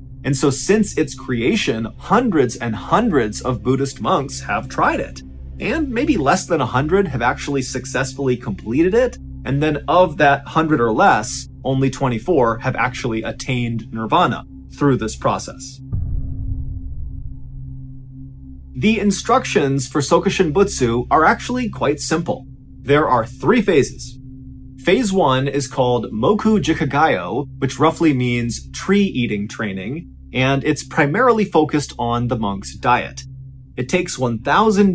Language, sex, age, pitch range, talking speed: English, male, 30-49, 110-155 Hz, 130 wpm